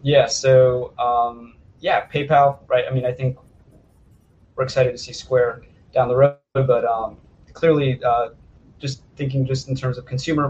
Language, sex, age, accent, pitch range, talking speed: English, male, 20-39, American, 115-135 Hz, 165 wpm